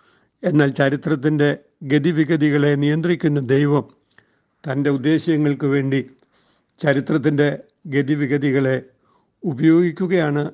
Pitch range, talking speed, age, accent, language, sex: 140-165 Hz, 75 wpm, 60-79, native, Malayalam, male